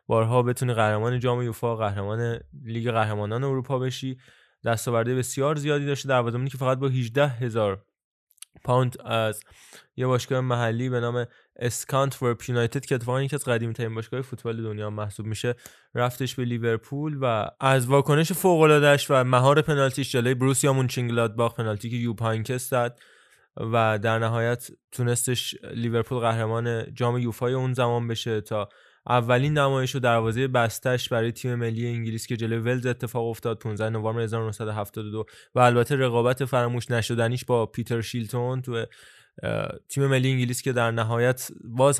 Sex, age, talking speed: male, 20-39, 145 wpm